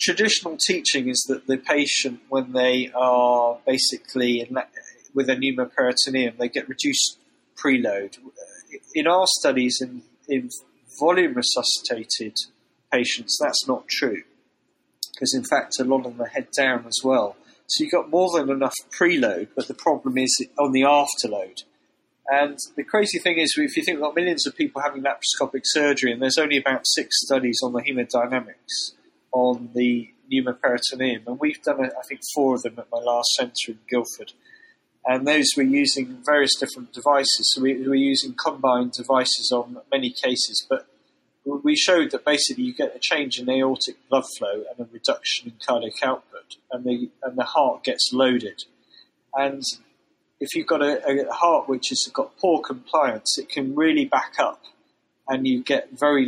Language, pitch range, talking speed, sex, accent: English, 125-150 Hz, 165 wpm, male, British